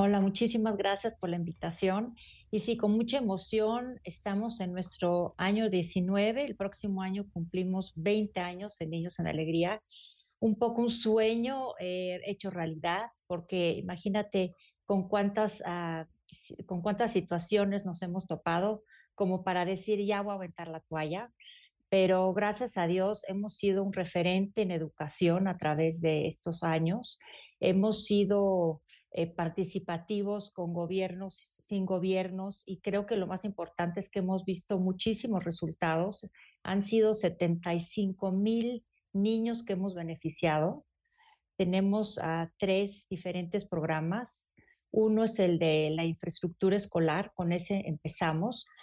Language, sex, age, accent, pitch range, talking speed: Spanish, female, 40-59, Mexican, 175-210 Hz, 135 wpm